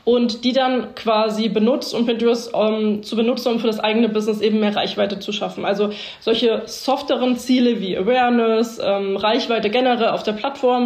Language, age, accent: German, 20-39, German